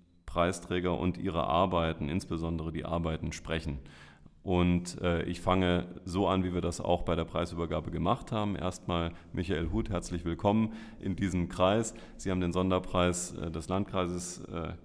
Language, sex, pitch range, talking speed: German, male, 85-100 Hz, 155 wpm